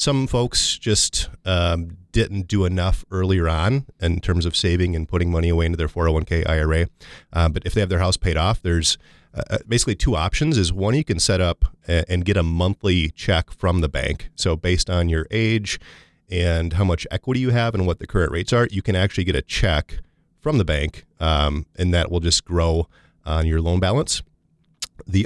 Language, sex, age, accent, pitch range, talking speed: English, male, 30-49, American, 80-95 Hz, 205 wpm